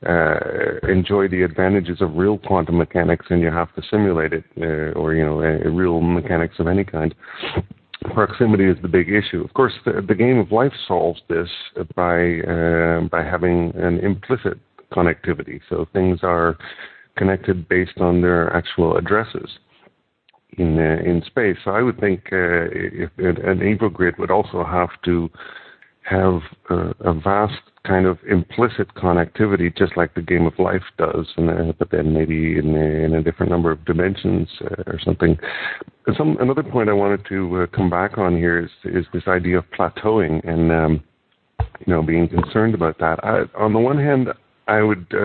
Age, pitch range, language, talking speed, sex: 50-69, 85-100 Hz, English, 180 wpm, male